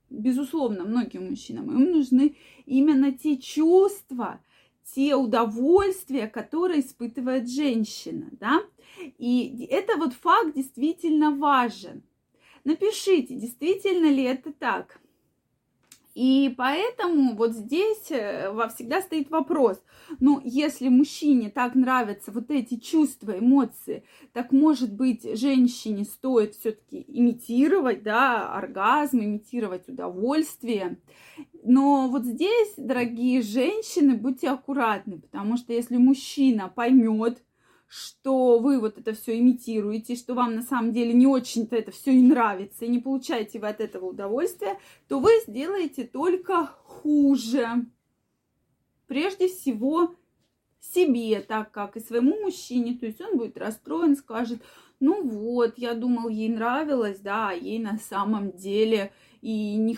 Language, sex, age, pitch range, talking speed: Russian, female, 20-39, 230-300 Hz, 120 wpm